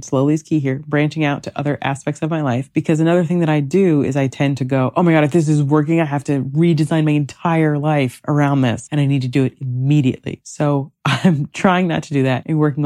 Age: 30-49